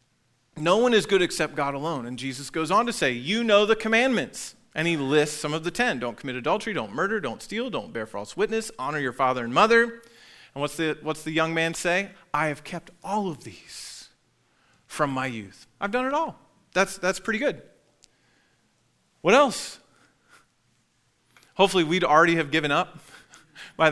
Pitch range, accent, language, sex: 125-170 Hz, American, English, male